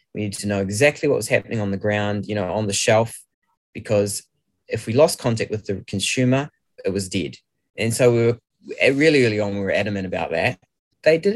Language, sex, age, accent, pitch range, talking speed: English, male, 20-39, Australian, 100-125 Hz, 215 wpm